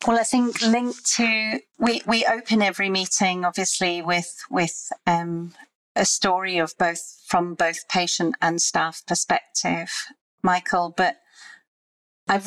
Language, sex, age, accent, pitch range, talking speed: English, female, 40-59, British, 175-200 Hz, 130 wpm